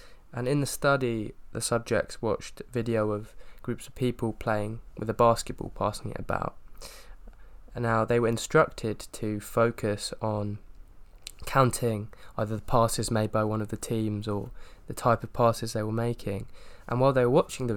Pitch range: 105-125 Hz